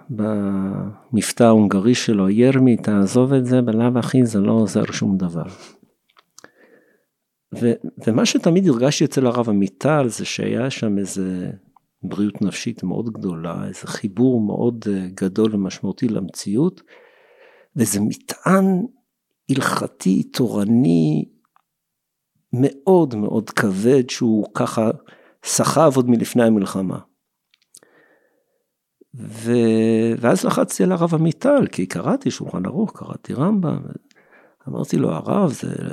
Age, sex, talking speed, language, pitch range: 50-69, male, 105 wpm, Hebrew, 105-145 Hz